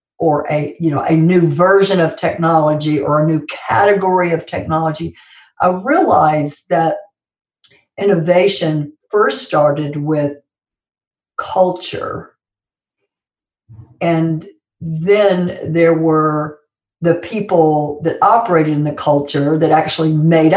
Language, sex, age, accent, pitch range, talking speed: English, female, 60-79, American, 155-190 Hz, 110 wpm